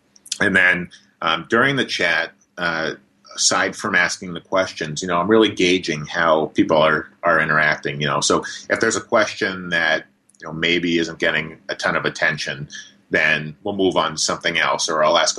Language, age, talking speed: English, 30-49, 190 wpm